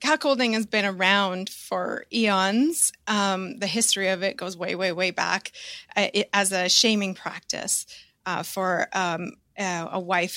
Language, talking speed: English, 160 wpm